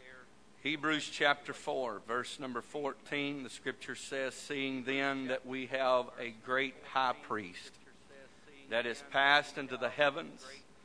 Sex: male